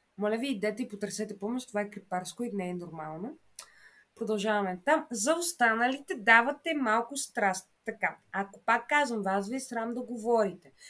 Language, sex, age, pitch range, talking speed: Bulgarian, female, 20-39, 200-260 Hz, 165 wpm